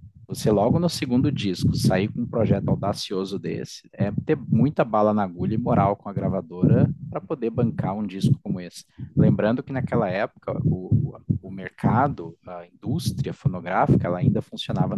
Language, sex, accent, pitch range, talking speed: Portuguese, male, Brazilian, 100-130 Hz, 170 wpm